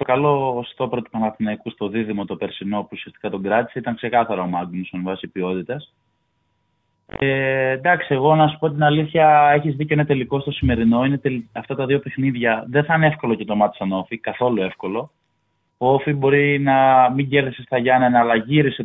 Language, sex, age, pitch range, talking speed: Greek, male, 20-39, 115-150 Hz, 190 wpm